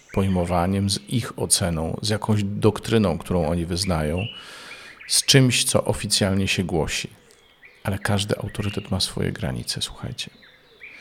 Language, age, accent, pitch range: Polish, 40-59, native, 95-110 Hz